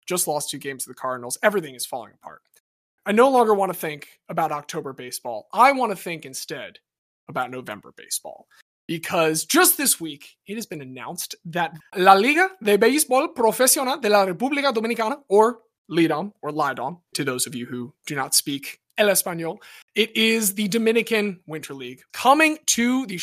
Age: 20-39